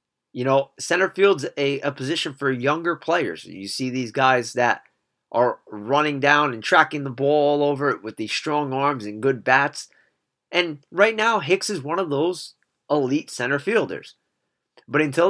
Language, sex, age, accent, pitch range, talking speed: English, male, 30-49, American, 130-170 Hz, 175 wpm